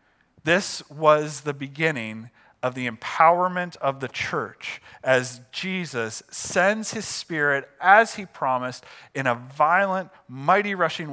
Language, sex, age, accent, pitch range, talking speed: English, male, 40-59, American, 140-210 Hz, 125 wpm